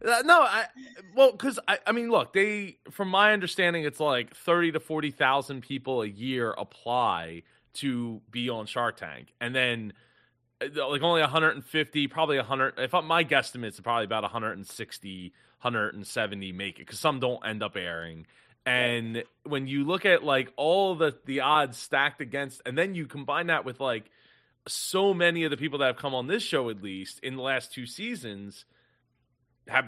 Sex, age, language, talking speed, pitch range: male, 30-49, English, 180 wpm, 120-160 Hz